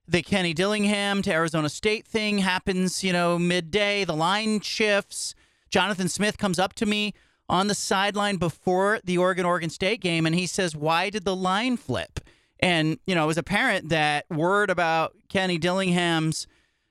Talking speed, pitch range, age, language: 170 wpm, 170-210 Hz, 40-59, English